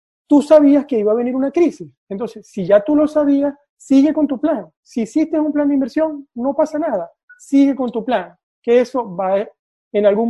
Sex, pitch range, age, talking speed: male, 190-270 Hz, 40-59, 210 wpm